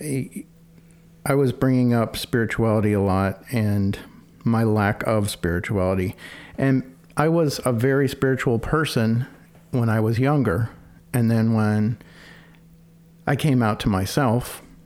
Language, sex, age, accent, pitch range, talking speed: English, male, 50-69, American, 105-135 Hz, 125 wpm